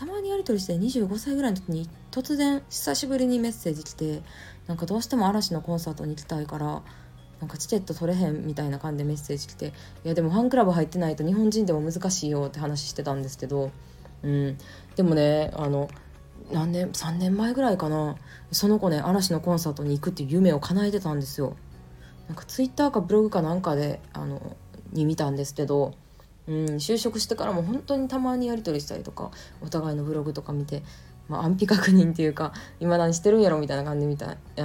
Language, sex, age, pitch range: Japanese, female, 20-39, 145-185 Hz